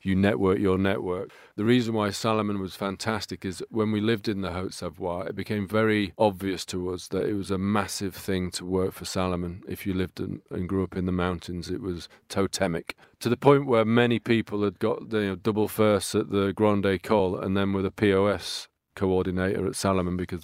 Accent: British